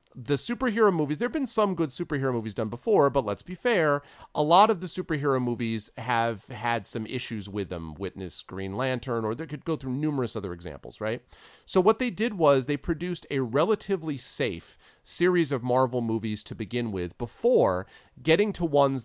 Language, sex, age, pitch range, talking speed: English, male, 40-59, 110-160 Hz, 190 wpm